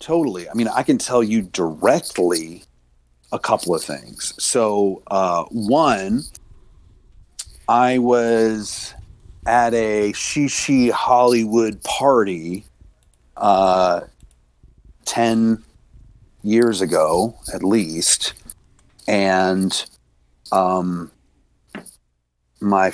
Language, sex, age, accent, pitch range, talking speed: English, male, 40-59, American, 90-115 Hz, 80 wpm